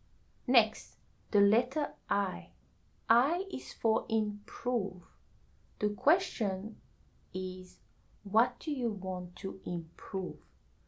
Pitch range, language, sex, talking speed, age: 175-240 Hz, English, female, 95 wpm, 30-49